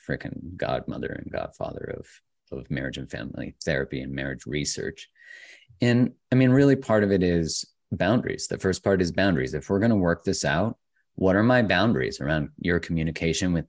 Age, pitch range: 30-49, 80-110 Hz